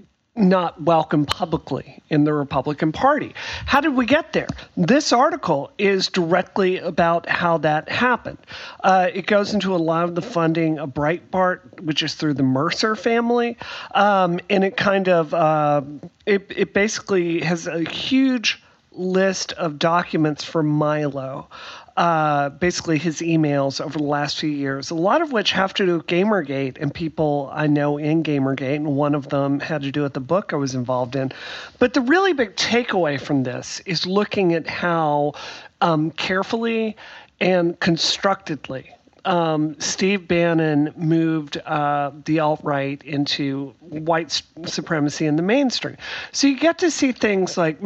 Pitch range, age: 150-190 Hz, 40-59